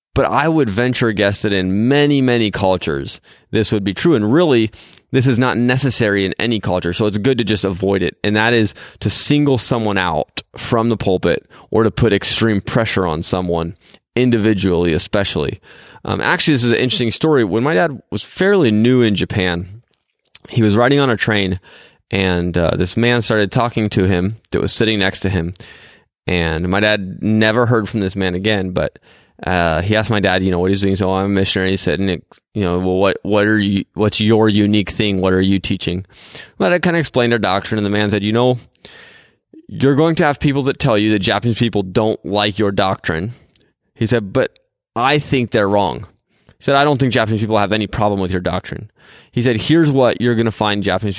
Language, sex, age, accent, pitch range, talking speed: English, male, 20-39, American, 95-120 Hz, 220 wpm